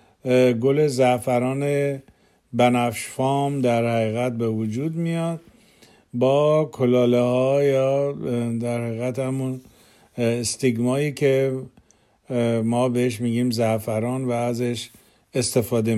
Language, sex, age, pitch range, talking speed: Persian, male, 50-69, 120-145 Hz, 85 wpm